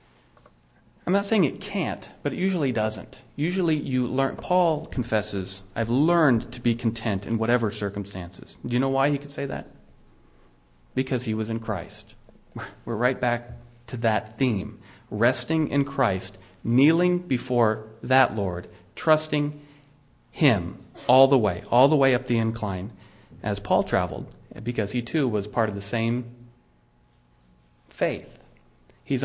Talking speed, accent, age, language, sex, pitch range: 150 wpm, American, 40-59, English, male, 100-135 Hz